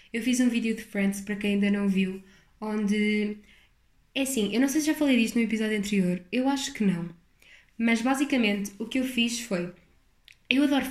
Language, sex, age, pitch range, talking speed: Portuguese, female, 10-29, 200-240 Hz, 205 wpm